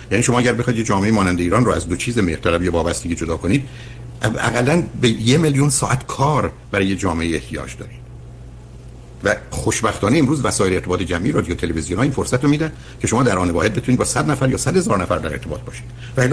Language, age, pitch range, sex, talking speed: Persian, 60-79, 95-130 Hz, male, 205 wpm